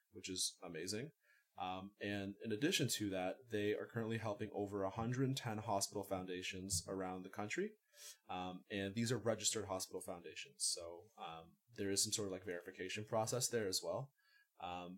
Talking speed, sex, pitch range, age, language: 165 wpm, male, 95-120 Hz, 20-39, English